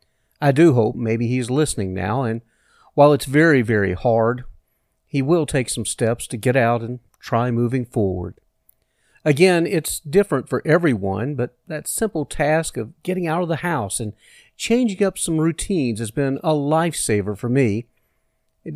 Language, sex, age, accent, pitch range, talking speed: English, male, 50-69, American, 120-175 Hz, 165 wpm